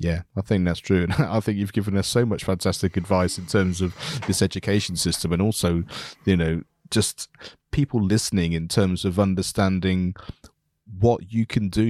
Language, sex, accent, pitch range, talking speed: English, male, British, 90-110 Hz, 180 wpm